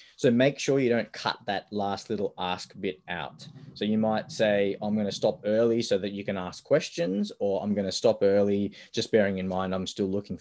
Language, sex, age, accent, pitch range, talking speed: English, male, 20-39, Australian, 95-125 Hz, 220 wpm